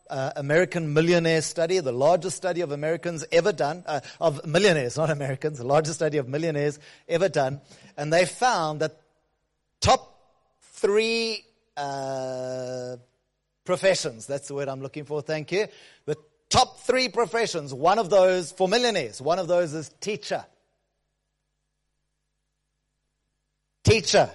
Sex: male